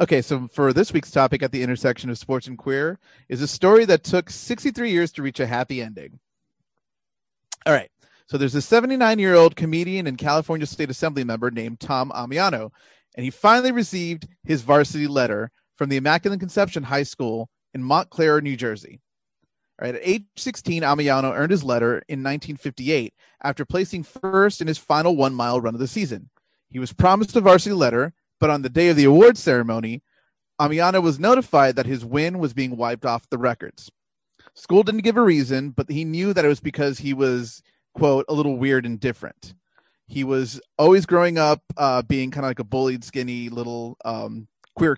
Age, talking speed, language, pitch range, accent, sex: 30-49, 185 wpm, English, 130-165 Hz, American, male